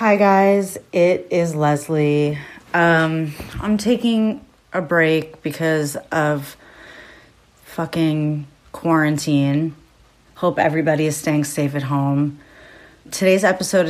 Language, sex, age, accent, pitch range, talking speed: English, female, 30-49, American, 145-165 Hz, 100 wpm